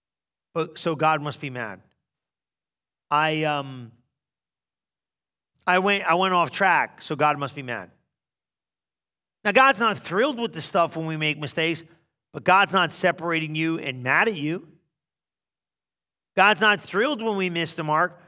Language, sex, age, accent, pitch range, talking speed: English, male, 40-59, American, 160-205 Hz, 155 wpm